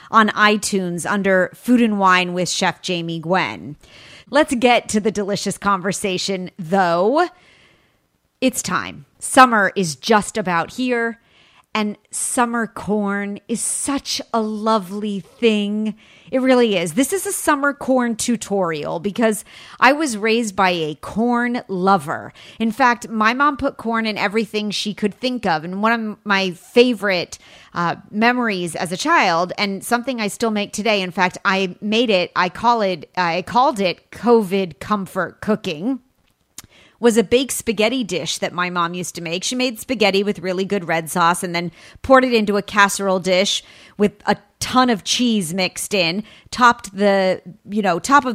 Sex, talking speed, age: female, 160 wpm, 30-49